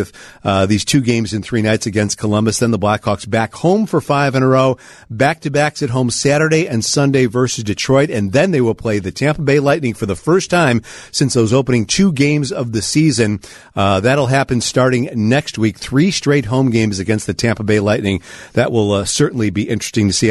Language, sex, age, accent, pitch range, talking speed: English, male, 50-69, American, 110-150 Hz, 215 wpm